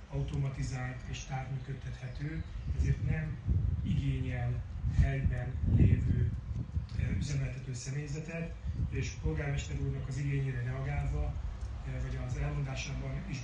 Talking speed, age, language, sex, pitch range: 90 wpm, 30-49, Hungarian, male, 105-140 Hz